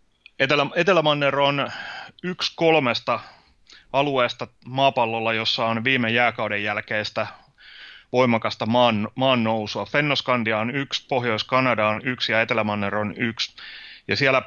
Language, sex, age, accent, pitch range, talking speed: Finnish, male, 30-49, native, 105-125 Hz, 110 wpm